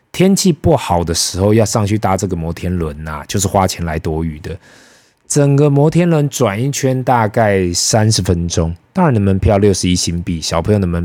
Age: 20-39